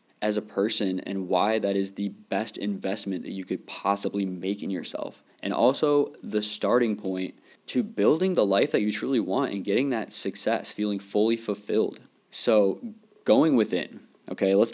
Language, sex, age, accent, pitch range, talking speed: English, male, 20-39, American, 95-110 Hz, 170 wpm